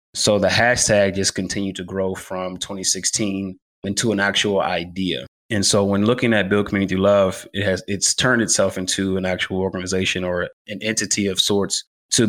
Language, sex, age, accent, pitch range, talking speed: English, male, 20-39, American, 95-105 Hz, 180 wpm